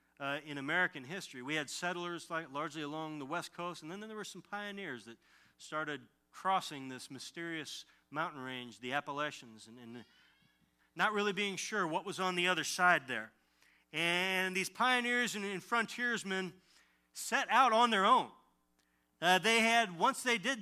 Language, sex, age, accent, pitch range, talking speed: English, male, 40-59, American, 145-190 Hz, 170 wpm